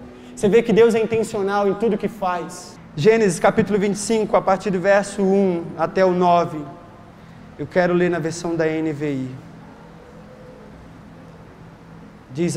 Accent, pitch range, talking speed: Brazilian, 170-210 Hz, 145 wpm